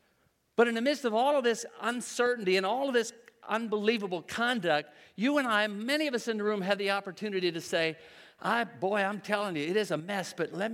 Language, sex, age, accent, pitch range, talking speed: English, male, 50-69, American, 155-225 Hz, 225 wpm